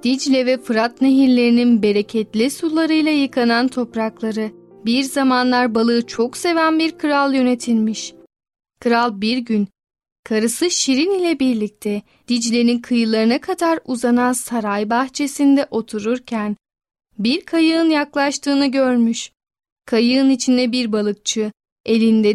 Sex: female